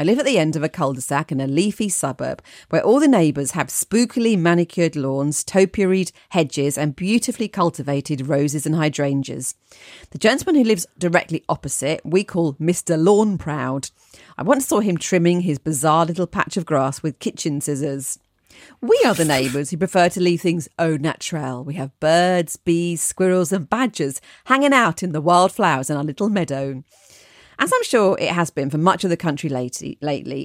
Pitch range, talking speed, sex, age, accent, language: 145-185 Hz, 180 wpm, female, 40-59, British, English